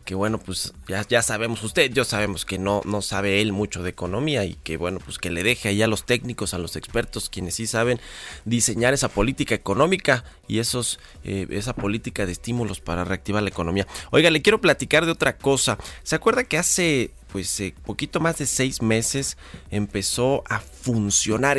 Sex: male